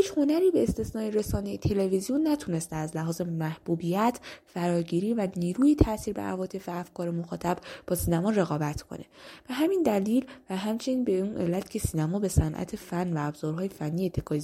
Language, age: Persian, 10-29